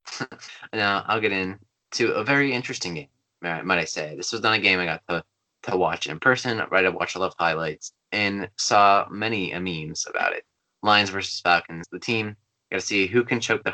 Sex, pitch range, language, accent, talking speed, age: male, 85-100 Hz, English, American, 220 wpm, 20-39